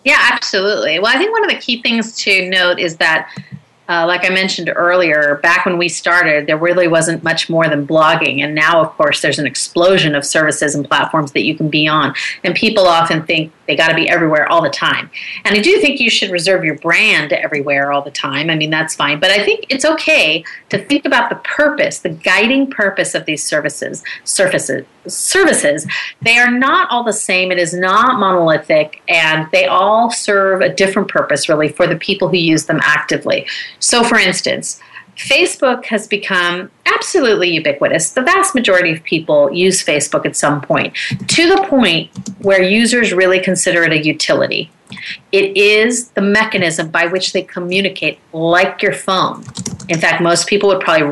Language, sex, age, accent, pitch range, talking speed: English, female, 30-49, American, 160-220 Hz, 190 wpm